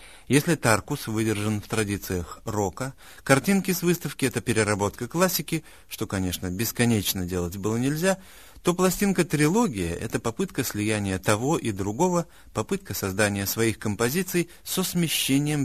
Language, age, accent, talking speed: Russian, 30-49, native, 125 wpm